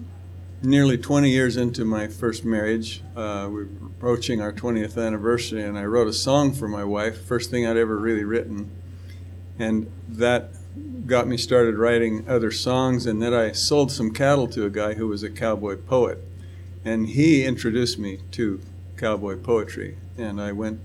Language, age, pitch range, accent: English, 50-69, 95-120 Hz, American